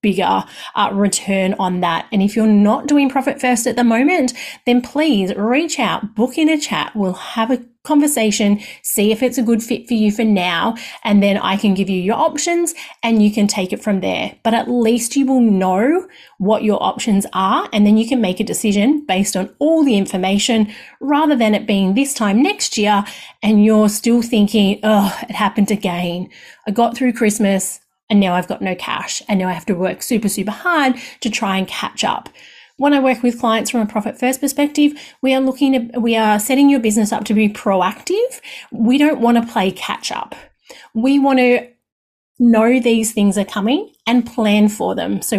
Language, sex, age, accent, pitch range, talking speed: English, female, 30-49, Australian, 200-255 Hz, 210 wpm